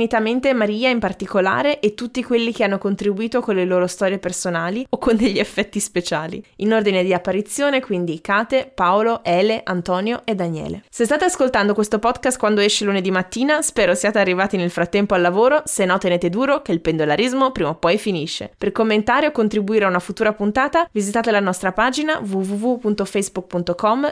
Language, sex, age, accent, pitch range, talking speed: Italian, female, 20-39, native, 185-240 Hz, 175 wpm